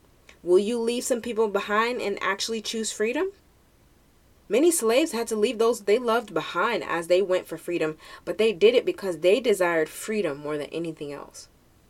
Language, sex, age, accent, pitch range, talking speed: English, female, 20-39, American, 175-230 Hz, 180 wpm